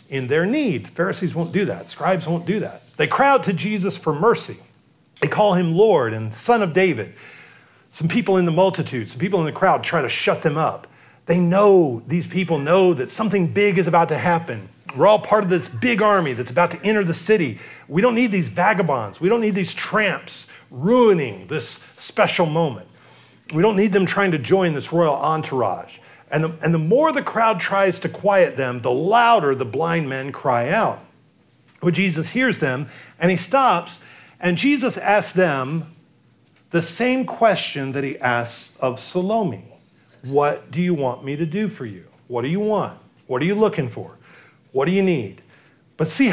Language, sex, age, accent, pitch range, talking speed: English, male, 40-59, American, 140-200 Hz, 195 wpm